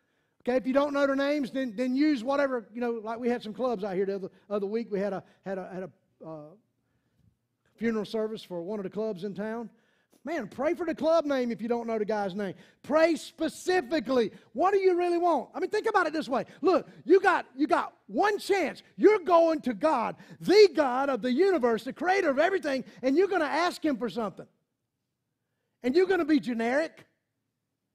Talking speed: 215 wpm